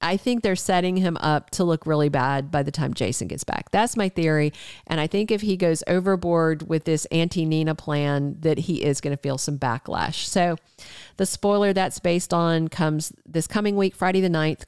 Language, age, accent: English, 50-69, American